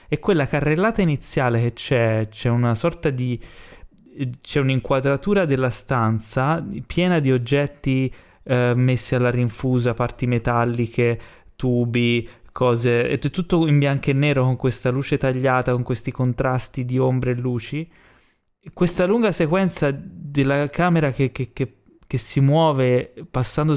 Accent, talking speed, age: native, 135 wpm, 20-39